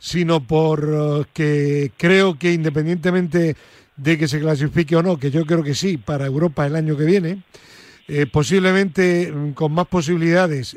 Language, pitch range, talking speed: Spanish, 155-180 Hz, 150 wpm